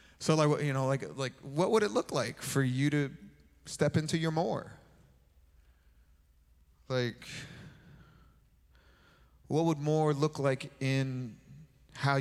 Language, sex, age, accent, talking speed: English, male, 30-49, American, 130 wpm